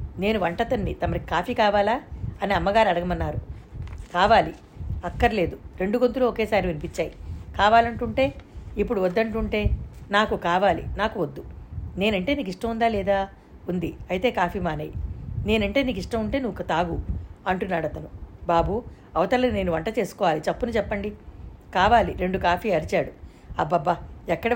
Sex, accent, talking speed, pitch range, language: female, native, 120 wpm, 170-220 Hz, Telugu